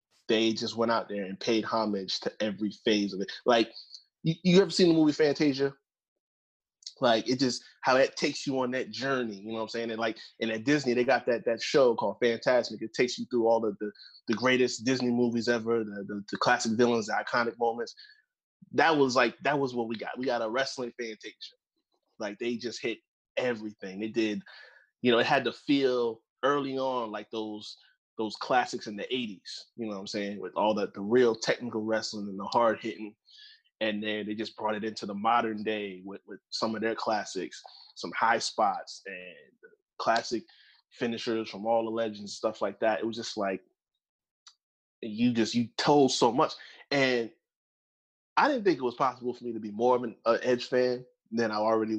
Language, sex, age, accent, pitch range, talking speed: English, male, 20-39, American, 110-130 Hz, 205 wpm